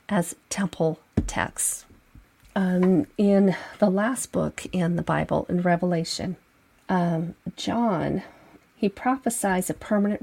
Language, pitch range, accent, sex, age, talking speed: English, 175-205 Hz, American, female, 40-59, 110 wpm